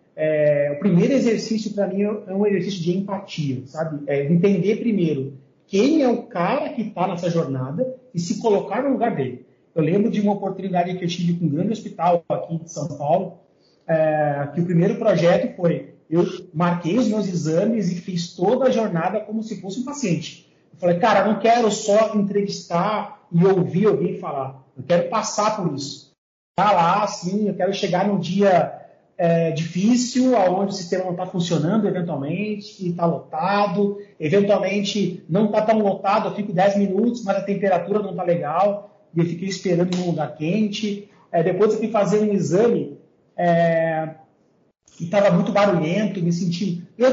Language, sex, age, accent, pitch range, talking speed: Portuguese, male, 30-49, Brazilian, 170-210 Hz, 180 wpm